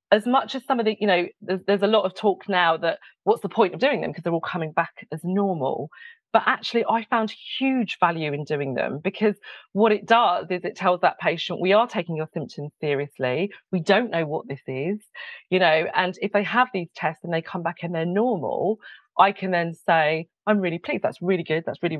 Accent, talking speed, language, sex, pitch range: British, 235 wpm, English, female, 160-200 Hz